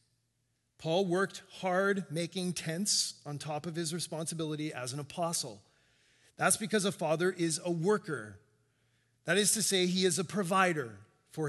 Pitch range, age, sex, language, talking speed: 130-180 Hz, 30-49, male, English, 150 wpm